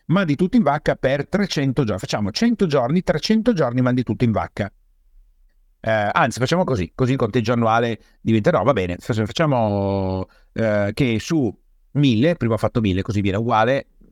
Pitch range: 110-155 Hz